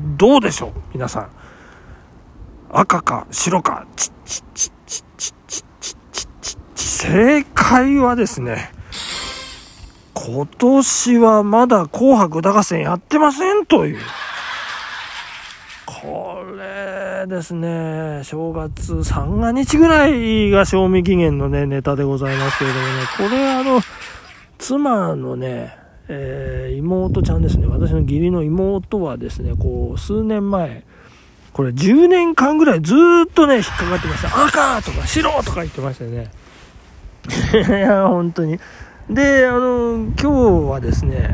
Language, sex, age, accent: Japanese, male, 40-59, native